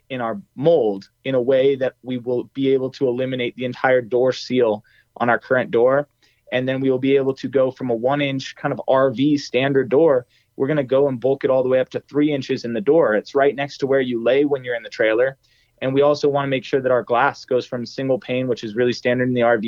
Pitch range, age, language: 125-145 Hz, 20-39, English